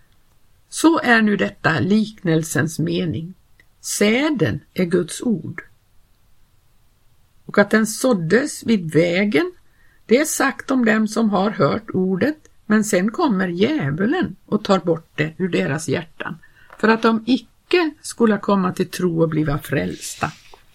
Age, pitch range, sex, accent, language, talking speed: 50-69, 175-230 Hz, female, native, Swedish, 135 wpm